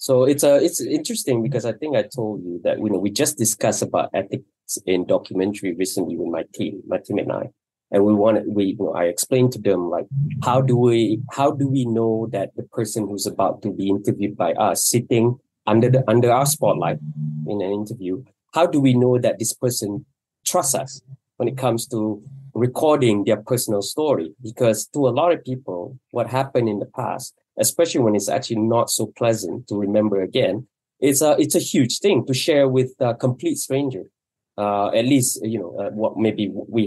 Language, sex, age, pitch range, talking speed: English, male, 20-39, 105-130 Hz, 200 wpm